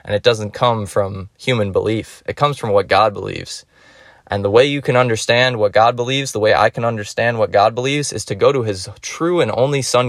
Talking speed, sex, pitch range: 230 wpm, male, 105-145 Hz